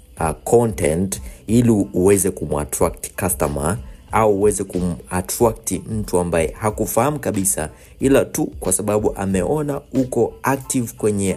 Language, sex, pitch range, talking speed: Swahili, male, 80-110 Hz, 110 wpm